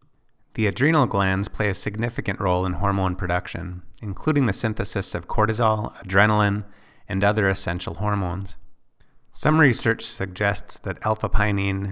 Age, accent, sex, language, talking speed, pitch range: 30-49, American, male, English, 125 wpm, 90-110 Hz